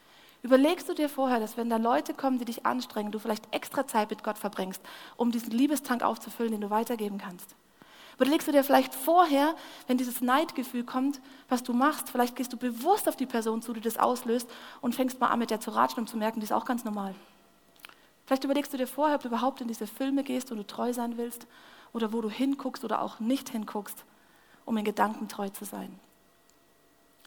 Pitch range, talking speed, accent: 215-260 Hz, 215 wpm, German